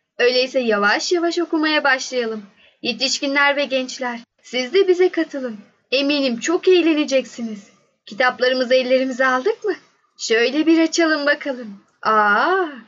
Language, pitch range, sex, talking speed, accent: Turkish, 225-290 Hz, female, 110 wpm, native